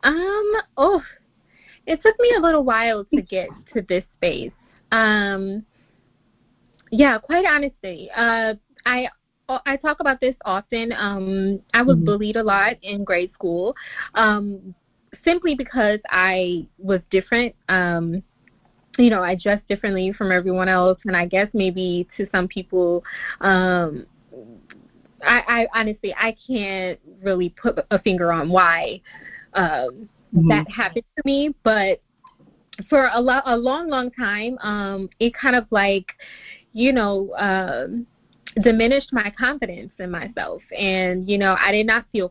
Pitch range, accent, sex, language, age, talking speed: 185-235 Hz, American, female, English, 20-39, 140 wpm